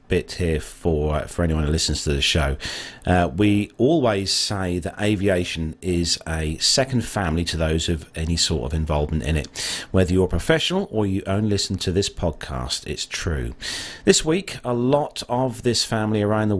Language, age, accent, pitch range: English, 40-59, British, 80-110 Hz